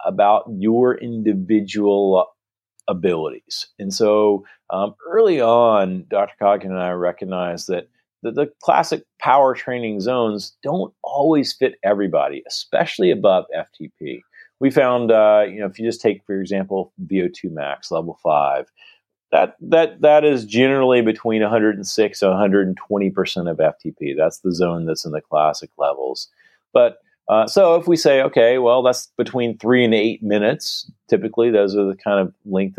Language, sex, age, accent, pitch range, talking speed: English, male, 40-59, American, 95-140 Hz, 150 wpm